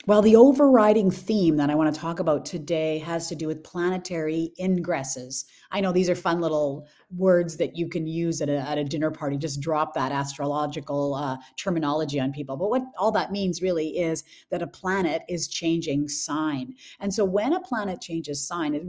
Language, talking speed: English, 195 wpm